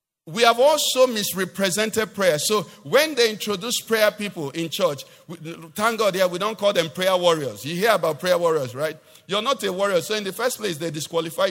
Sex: male